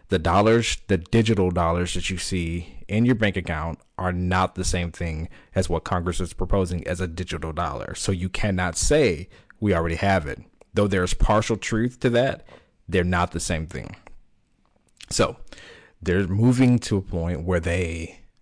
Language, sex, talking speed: English, male, 175 wpm